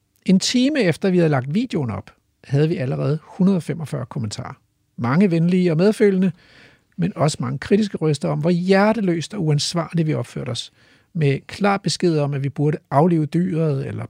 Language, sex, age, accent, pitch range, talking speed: Danish, male, 60-79, native, 135-190 Hz, 170 wpm